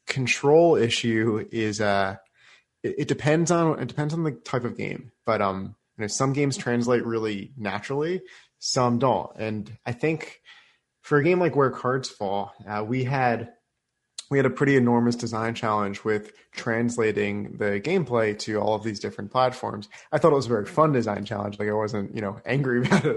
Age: 20-39